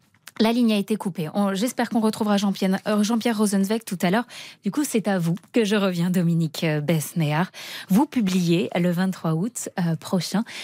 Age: 20-39